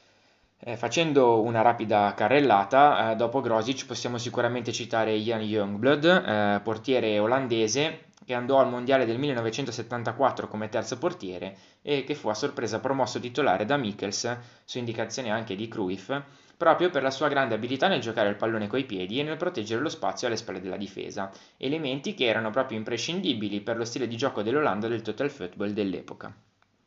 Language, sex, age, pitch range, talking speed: Italian, male, 20-39, 105-130 Hz, 160 wpm